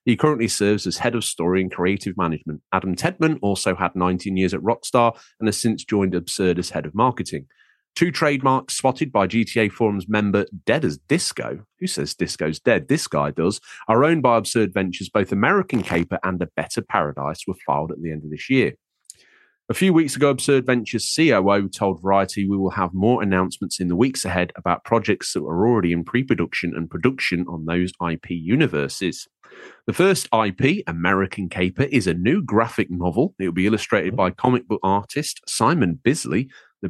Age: 30-49